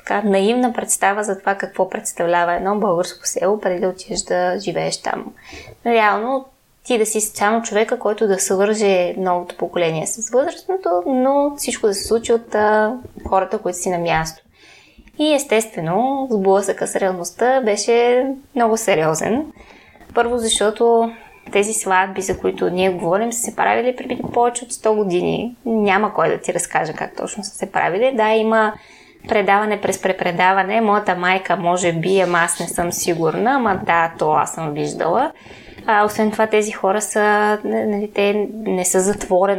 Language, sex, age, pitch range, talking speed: Bulgarian, female, 20-39, 180-225 Hz, 160 wpm